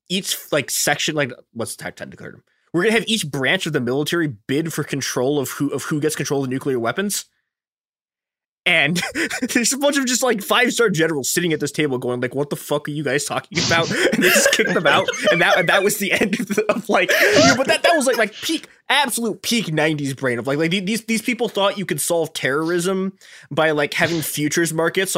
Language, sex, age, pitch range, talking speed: English, male, 20-39, 125-180 Hz, 230 wpm